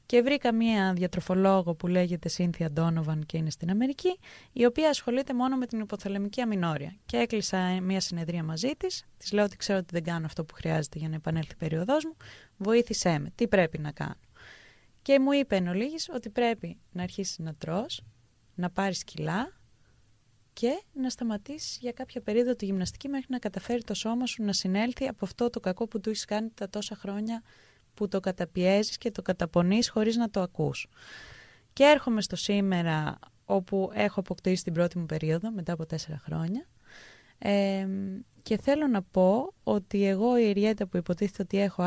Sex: female